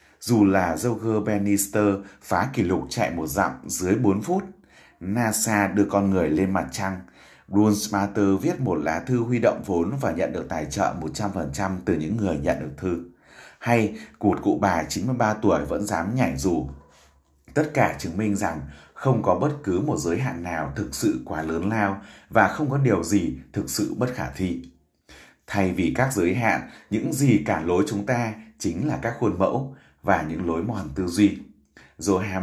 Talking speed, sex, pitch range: 185 wpm, male, 85-110 Hz